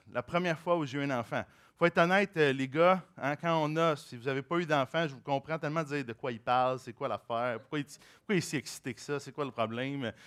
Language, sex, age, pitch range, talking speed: French, male, 30-49, 140-195 Hz, 275 wpm